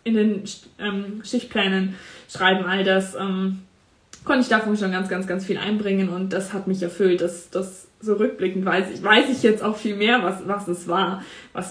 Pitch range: 185-225 Hz